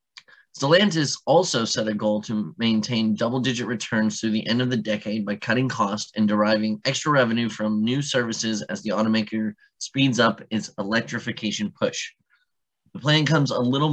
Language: English